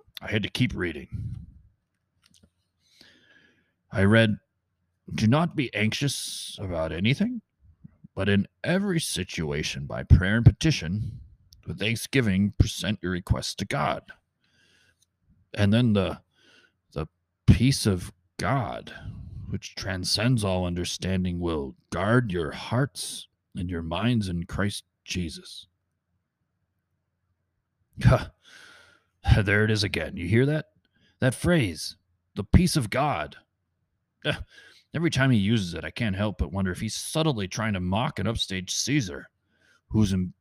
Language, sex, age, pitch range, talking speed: English, male, 30-49, 90-115 Hz, 120 wpm